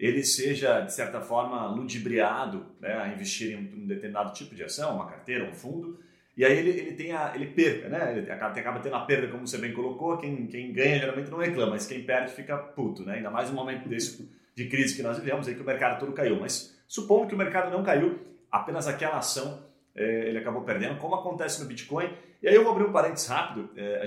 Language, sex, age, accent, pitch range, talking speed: Portuguese, male, 30-49, Brazilian, 120-175 Hz, 230 wpm